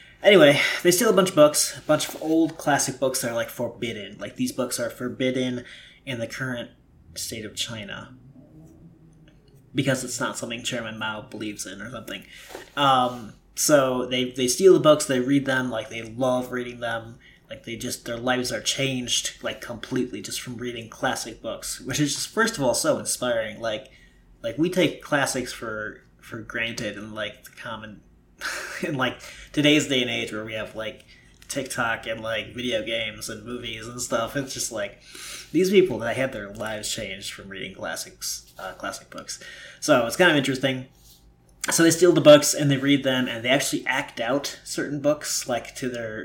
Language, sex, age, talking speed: English, male, 20-39, 190 wpm